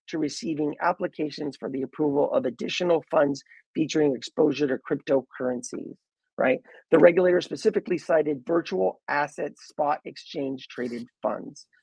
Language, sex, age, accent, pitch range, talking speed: English, male, 30-49, American, 145-185 Hz, 115 wpm